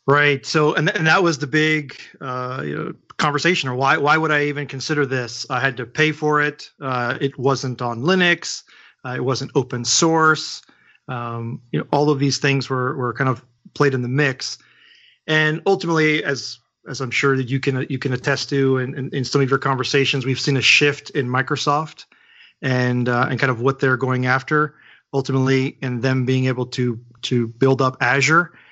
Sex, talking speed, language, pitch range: male, 205 wpm, English, 130-150 Hz